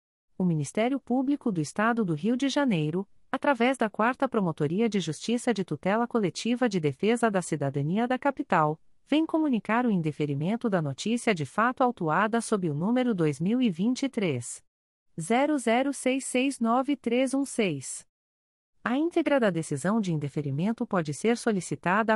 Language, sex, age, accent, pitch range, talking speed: Portuguese, female, 40-59, Brazilian, 170-250 Hz, 125 wpm